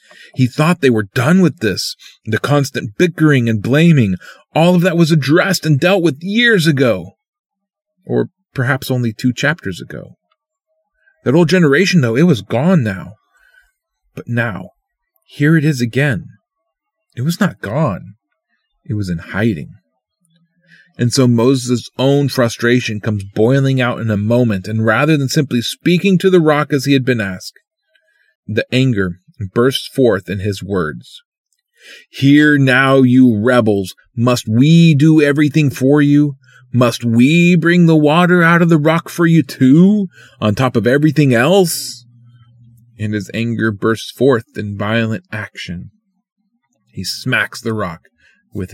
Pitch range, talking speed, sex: 115-170 Hz, 150 wpm, male